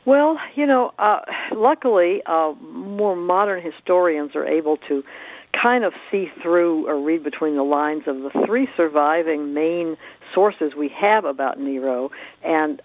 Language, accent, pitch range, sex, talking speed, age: English, American, 150-180 Hz, female, 150 wpm, 60-79